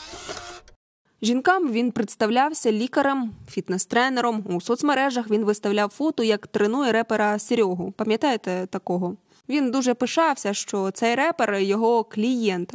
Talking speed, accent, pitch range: 120 wpm, native, 200-240 Hz